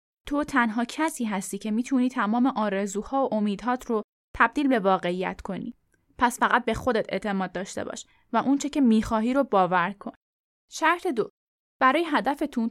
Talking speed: 155 wpm